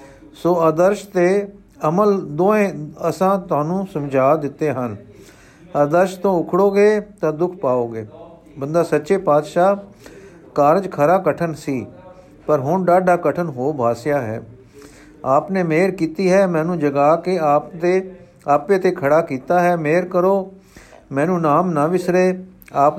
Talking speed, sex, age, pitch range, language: 135 wpm, male, 50-69, 145-180 Hz, Punjabi